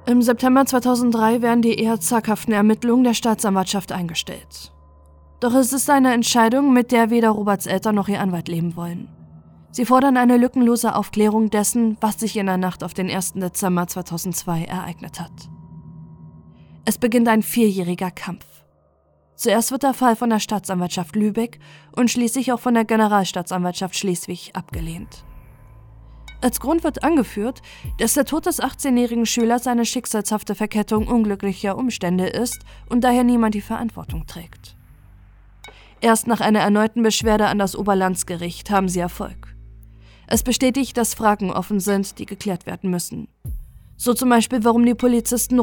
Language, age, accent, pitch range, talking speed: German, 20-39, German, 175-235 Hz, 150 wpm